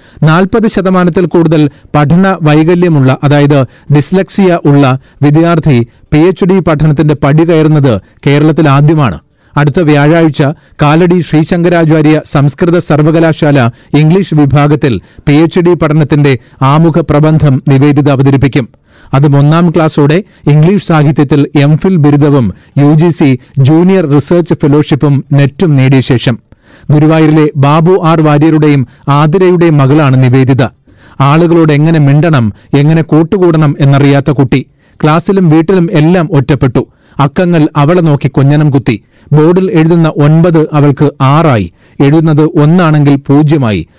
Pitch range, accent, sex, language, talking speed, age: 140-165 Hz, native, male, Malayalam, 100 wpm, 40-59